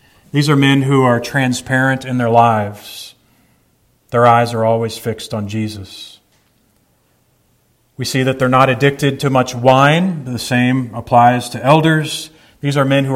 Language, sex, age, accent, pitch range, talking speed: English, male, 40-59, American, 120-140 Hz, 155 wpm